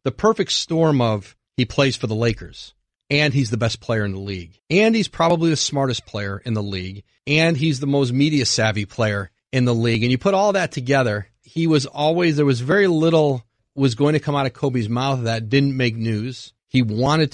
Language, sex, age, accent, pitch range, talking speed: English, male, 40-59, American, 115-145 Hz, 220 wpm